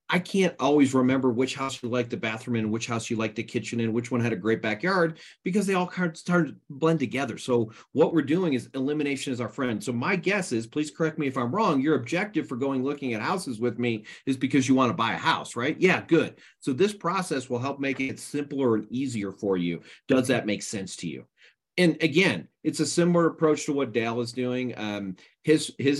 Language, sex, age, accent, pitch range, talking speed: English, male, 40-59, American, 115-145 Hz, 235 wpm